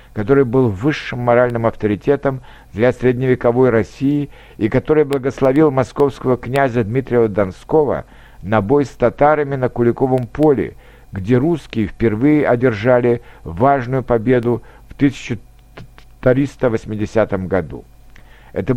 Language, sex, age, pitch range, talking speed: Russian, male, 60-79, 115-145 Hz, 100 wpm